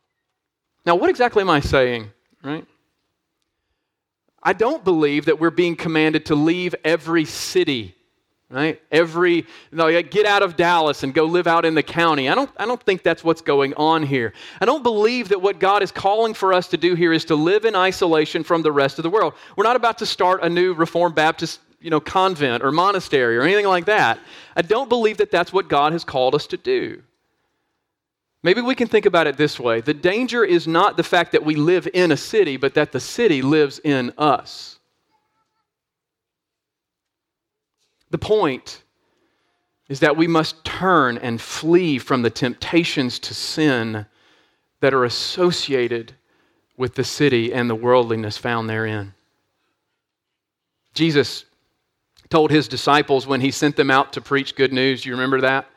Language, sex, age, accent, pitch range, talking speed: English, male, 40-59, American, 135-185 Hz, 175 wpm